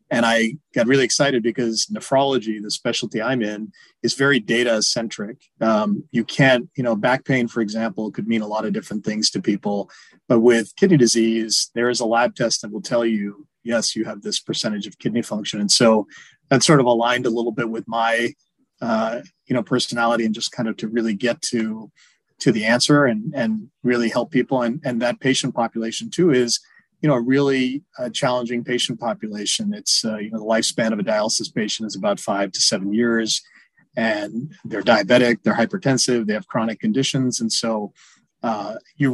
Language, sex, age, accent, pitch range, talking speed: English, male, 30-49, American, 110-130 Hz, 195 wpm